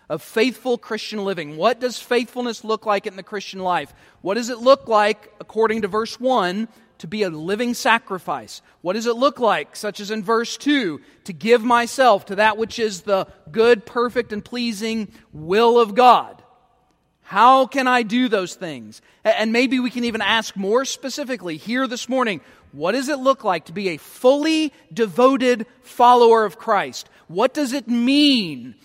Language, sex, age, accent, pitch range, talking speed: English, male, 40-59, American, 205-250 Hz, 180 wpm